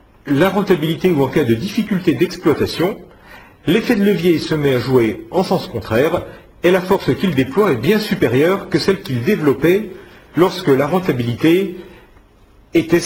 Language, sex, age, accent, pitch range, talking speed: French, male, 40-59, French, 125-195 Hz, 155 wpm